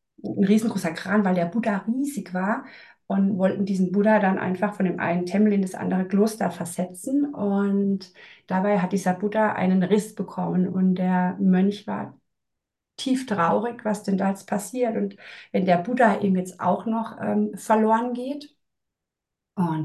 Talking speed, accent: 165 wpm, German